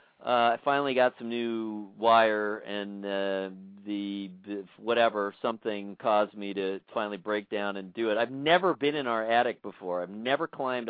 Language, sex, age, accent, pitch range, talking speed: English, male, 40-59, American, 110-145 Hz, 175 wpm